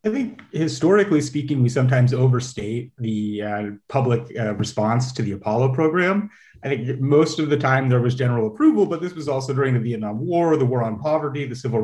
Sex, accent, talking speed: male, American, 205 wpm